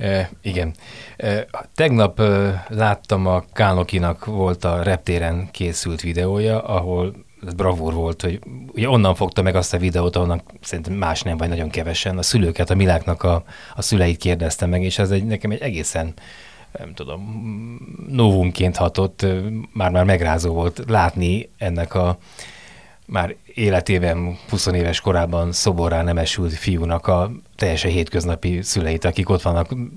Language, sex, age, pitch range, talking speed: Hungarian, male, 30-49, 85-100 Hz, 140 wpm